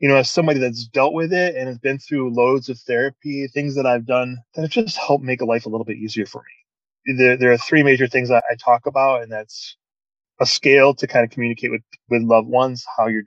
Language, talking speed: English, 255 wpm